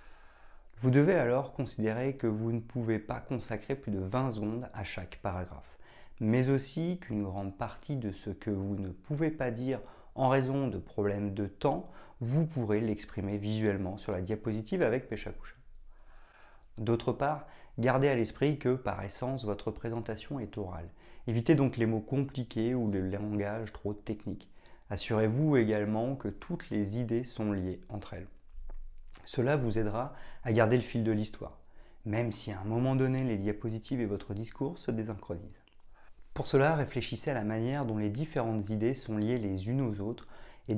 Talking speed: 170 wpm